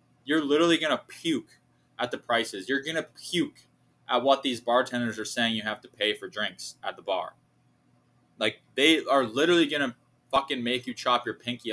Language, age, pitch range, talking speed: English, 20-39, 110-145 Hz, 200 wpm